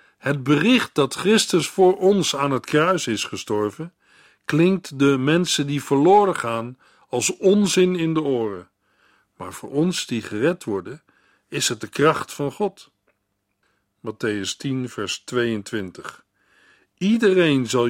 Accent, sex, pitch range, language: Dutch, male, 120-165 Hz, Dutch